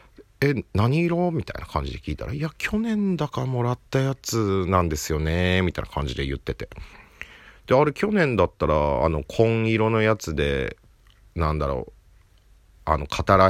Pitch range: 80-115 Hz